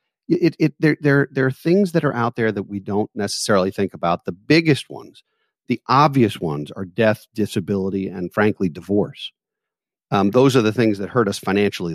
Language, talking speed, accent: English, 190 wpm, American